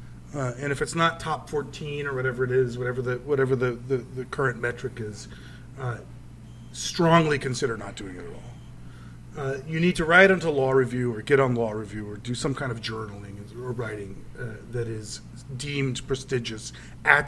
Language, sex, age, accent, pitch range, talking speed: English, male, 40-59, American, 120-150 Hz, 190 wpm